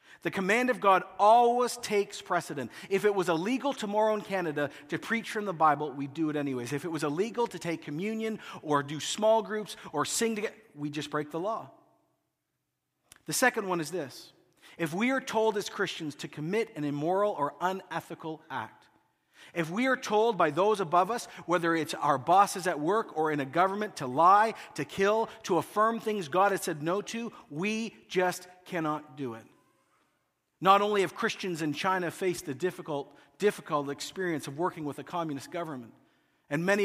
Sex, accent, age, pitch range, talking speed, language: male, American, 40-59, 150-210 Hz, 185 wpm, English